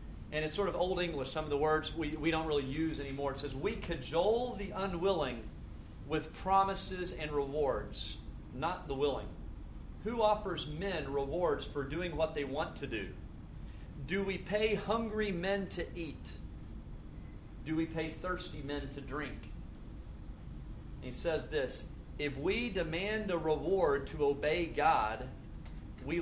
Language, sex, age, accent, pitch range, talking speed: English, male, 40-59, American, 125-175 Hz, 150 wpm